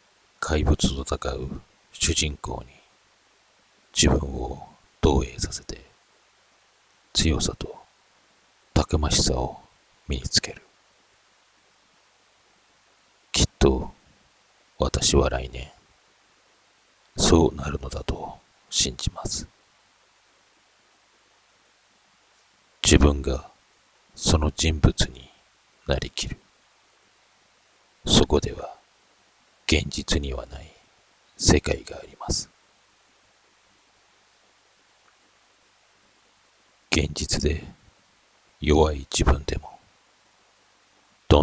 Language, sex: Japanese, male